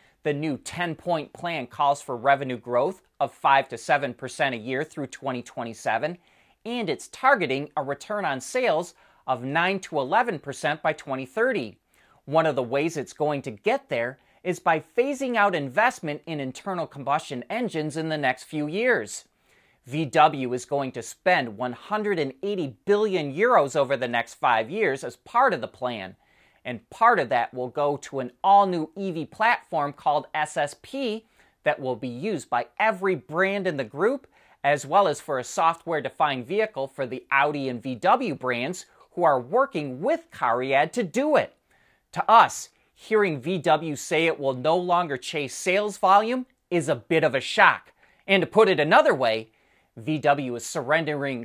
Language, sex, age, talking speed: English, male, 30-49, 170 wpm